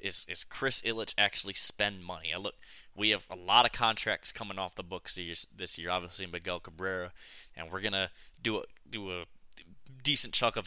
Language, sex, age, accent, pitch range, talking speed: English, male, 20-39, American, 85-110 Hz, 195 wpm